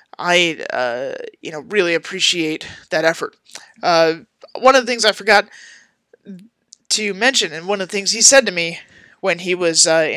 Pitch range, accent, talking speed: 160-240 Hz, American, 175 wpm